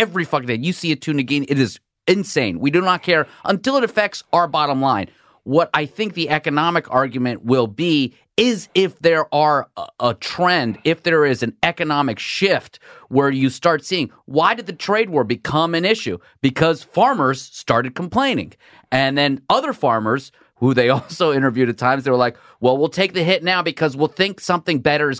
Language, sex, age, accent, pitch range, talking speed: English, male, 30-49, American, 125-175 Hz, 195 wpm